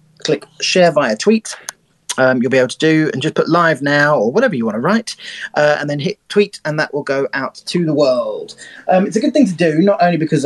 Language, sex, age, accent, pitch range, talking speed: English, male, 30-49, British, 135-190 Hz, 250 wpm